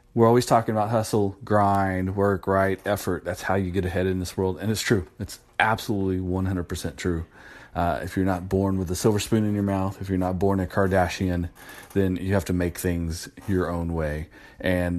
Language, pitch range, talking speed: English, 85-100 Hz, 210 wpm